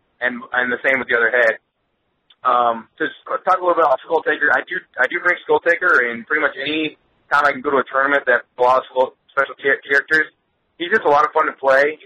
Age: 20-39